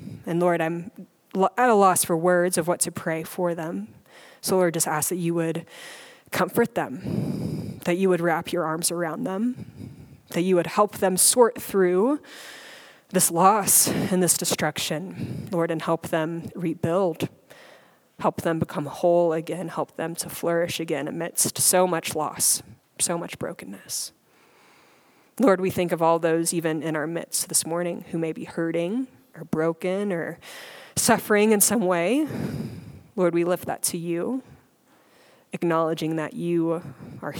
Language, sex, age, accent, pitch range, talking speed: English, female, 20-39, American, 165-190 Hz, 155 wpm